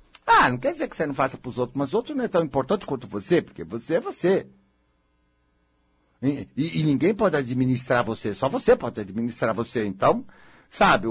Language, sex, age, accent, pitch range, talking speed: Portuguese, male, 60-79, Brazilian, 95-150 Hz, 205 wpm